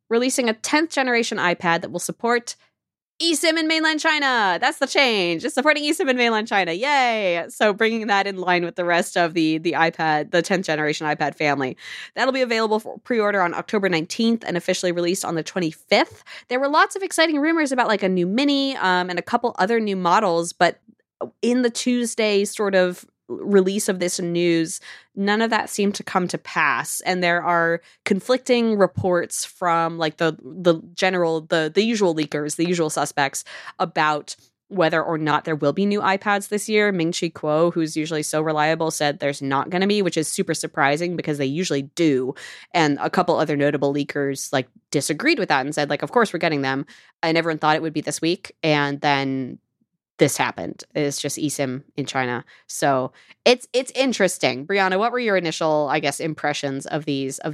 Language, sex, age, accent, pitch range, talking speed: English, female, 20-39, American, 155-220 Hz, 195 wpm